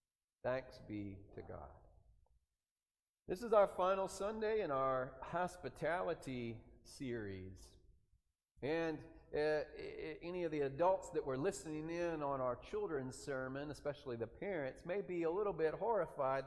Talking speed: 130 wpm